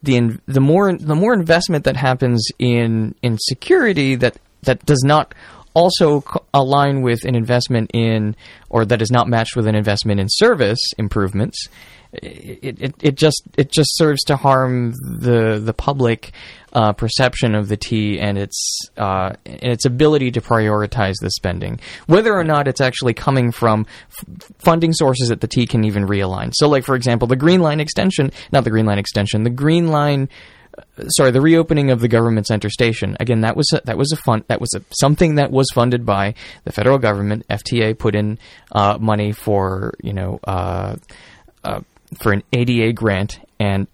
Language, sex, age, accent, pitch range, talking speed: English, male, 20-39, American, 105-135 Hz, 185 wpm